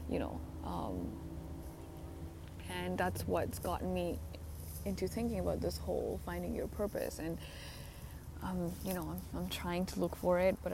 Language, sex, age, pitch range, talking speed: English, female, 20-39, 80-90 Hz, 155 wpm